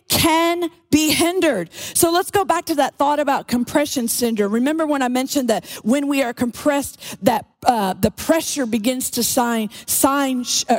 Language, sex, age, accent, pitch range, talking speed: English, female, 40-59, American, 225-290 Hz, 165 wpm